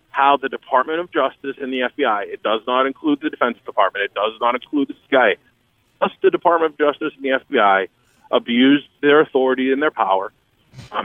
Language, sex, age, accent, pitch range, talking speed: English, male, 40-59, American, 110-145 Hz, 195 wpm